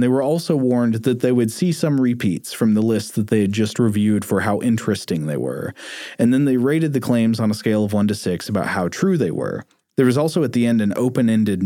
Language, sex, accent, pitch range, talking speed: English, male, American, 105-135 Hz, 250 wpm